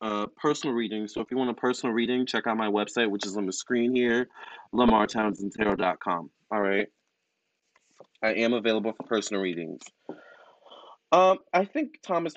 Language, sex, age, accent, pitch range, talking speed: English, male, 20-39, American, 105-130 Hz, 160 wpm